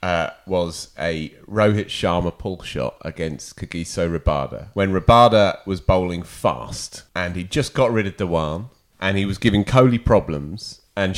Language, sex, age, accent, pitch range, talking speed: English, male, 30-49, British, 95-130 Hz, 155 wpm